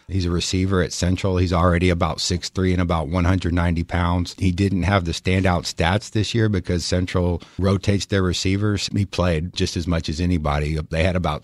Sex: male